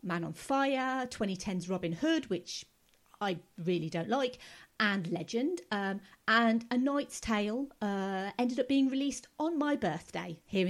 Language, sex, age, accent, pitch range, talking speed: English, female, 40-59, British, 185-265 Hz, 150 wpm